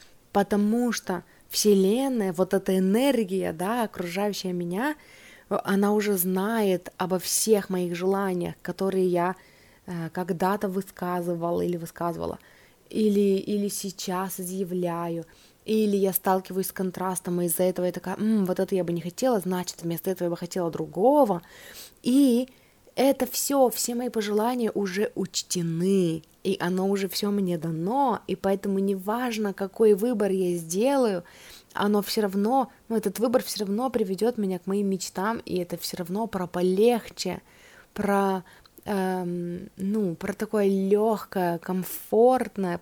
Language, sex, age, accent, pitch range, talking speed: Russian, female, 20-39, native, 180-215 Hz, 135 wpm